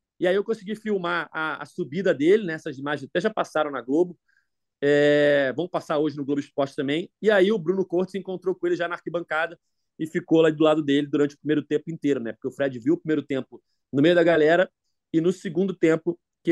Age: 30-49